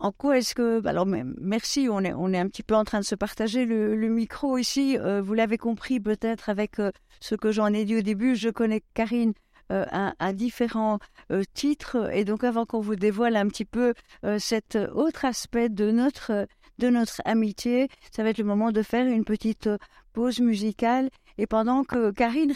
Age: 50-69